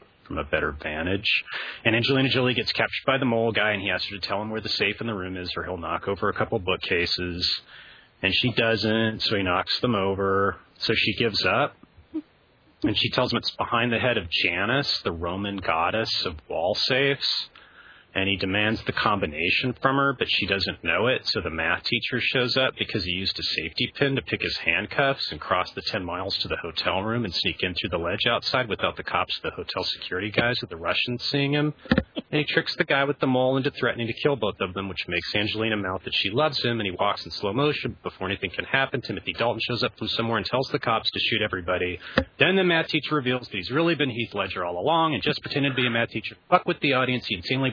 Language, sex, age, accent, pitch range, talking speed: English, male, 30-49, American, 95-130 Hz, 240 wpm